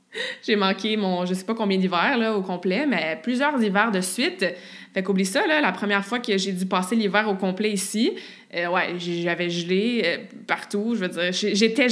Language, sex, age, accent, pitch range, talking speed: French, female, 20-39, Canadian, 190-240 Hz, 200 wpm